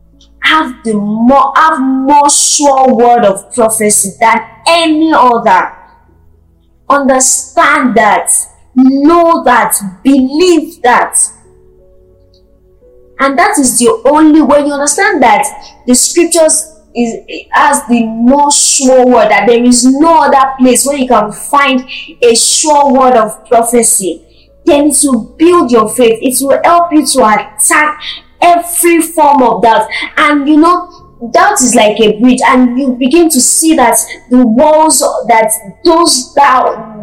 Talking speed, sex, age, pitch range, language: 135 wpm, female, 20-39, 225-300 Hz, English